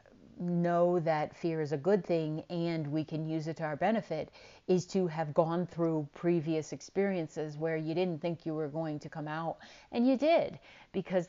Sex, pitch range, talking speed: female, 155-180 Hz, 190 wpm